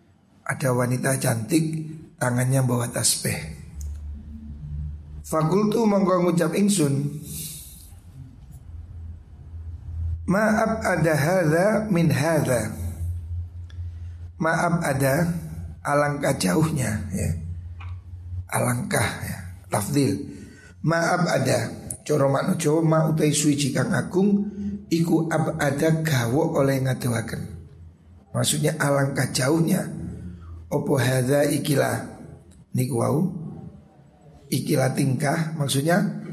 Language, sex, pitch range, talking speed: Indonesian, male, 110-160 Hz, 55 wpm